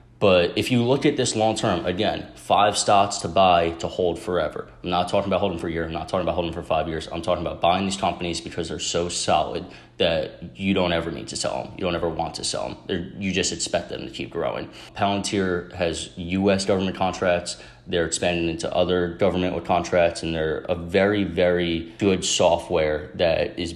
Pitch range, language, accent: 85-105 Hz, English, American